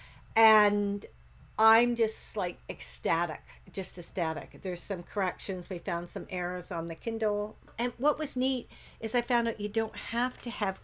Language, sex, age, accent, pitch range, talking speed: English, female, 60-79, American, 180-220 Hz, 165 wpm